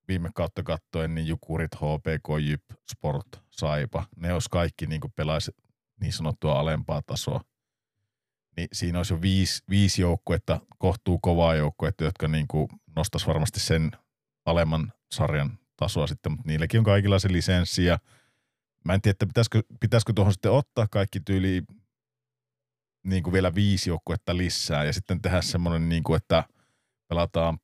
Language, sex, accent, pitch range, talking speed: Finnish, male, native, 75-100 Hz, 140 wpm